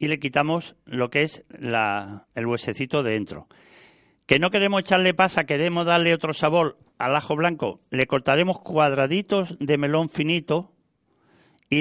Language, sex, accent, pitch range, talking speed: Spanish, male, Spanish, 120-155 Hz, 145 wpm